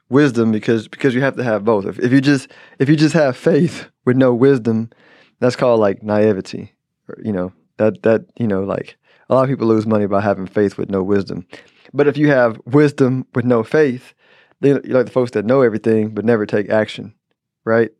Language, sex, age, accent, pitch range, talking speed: English, male, 20-39, American, 110-135 Hz, 215 wpm